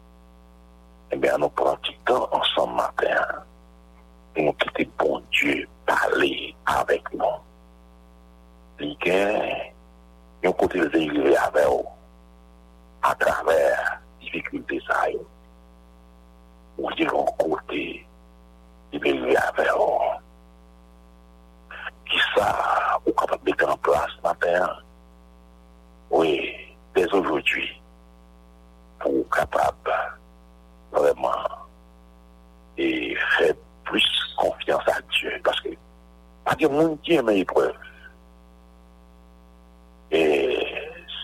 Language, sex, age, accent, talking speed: English, male, 60-79, French, 105 wpm